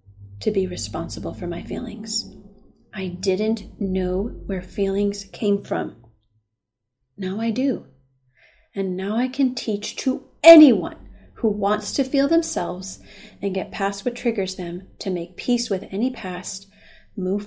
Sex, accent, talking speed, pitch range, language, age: female, American, 140 wpm, 165-215 Hz, English, 30-49